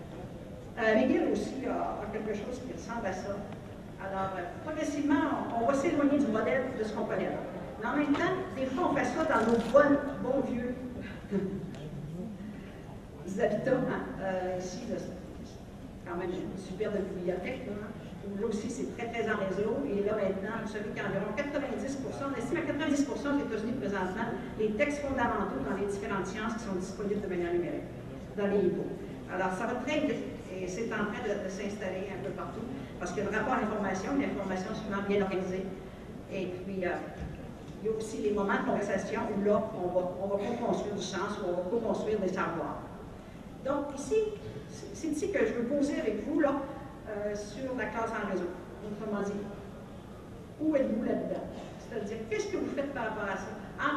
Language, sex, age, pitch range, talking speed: French, female, 50-69, 195-250 Hz, 190 wpm